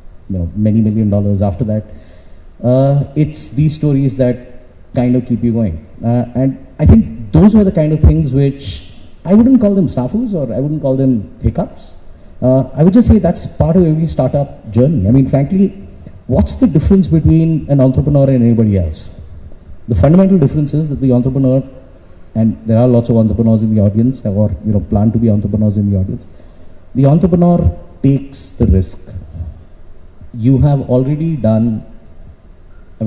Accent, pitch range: Indian, 95-140 Hz